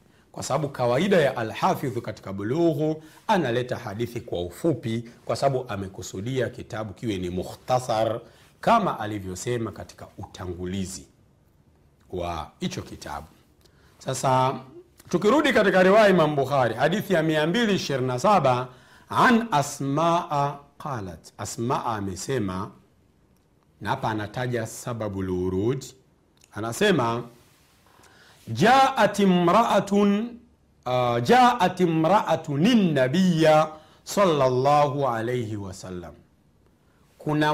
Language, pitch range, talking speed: Swahili, 105-155 Hz, 90 wpm